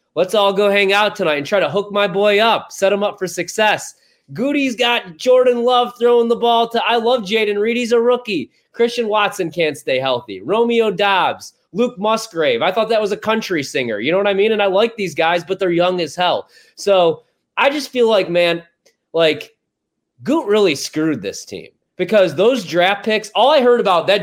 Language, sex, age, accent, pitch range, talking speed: English, male, 30-49, American, 170-220 Hz, 210 wpm